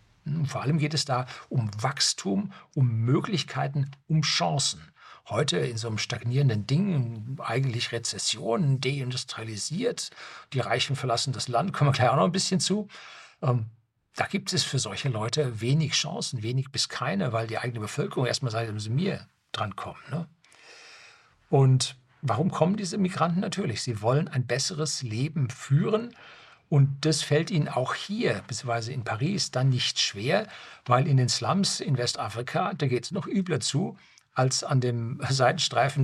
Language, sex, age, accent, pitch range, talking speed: German, male, 60-79, German, 120-155 Hz, 160 wpm